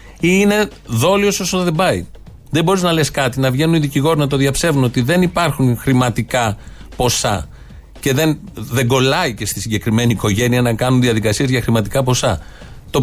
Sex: male